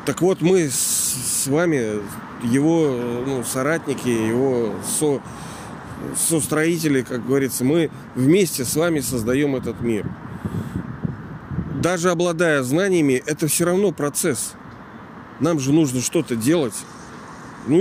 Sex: male